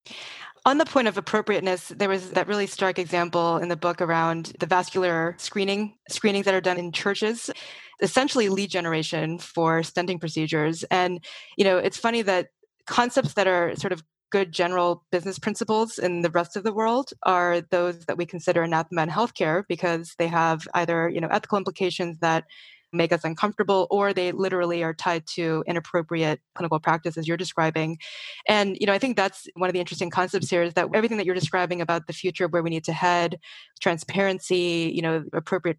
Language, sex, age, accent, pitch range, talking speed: English, female, 20-39, American, 165-190 Hz, 190 wpm